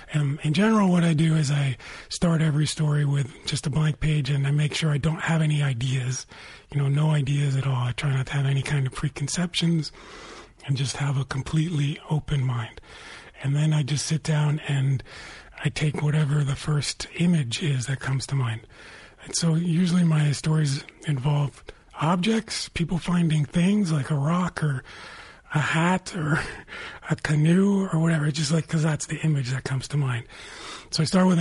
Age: 40-59